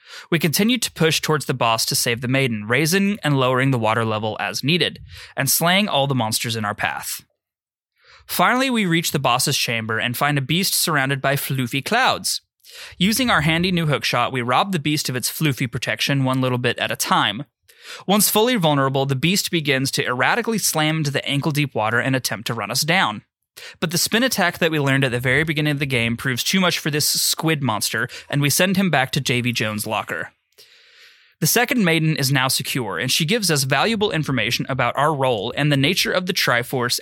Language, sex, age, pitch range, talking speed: English, male, 20-39, 125-175 Hz, 210 wpm